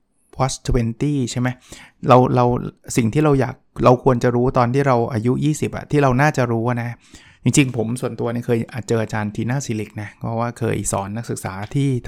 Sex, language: male, Thai